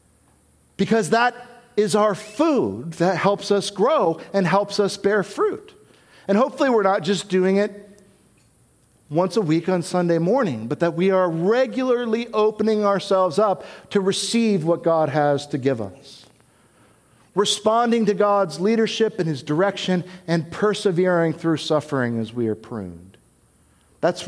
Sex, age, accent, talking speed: male, 50-69, American, 145 wpm